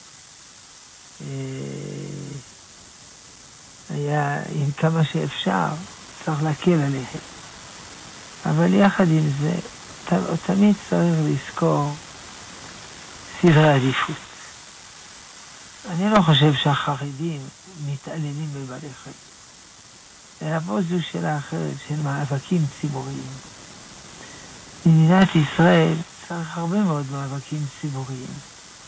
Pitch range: 145-165 Hz